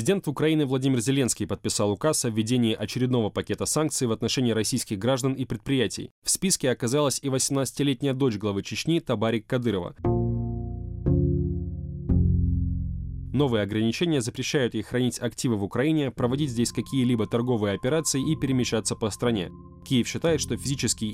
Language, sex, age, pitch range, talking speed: Russian, male, 20-39, 105-135 Hz, 135 wpm